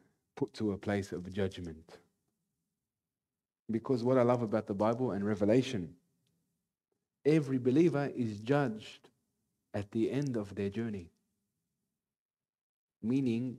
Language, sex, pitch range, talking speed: English, male, 100-125 Hz, 115 wpm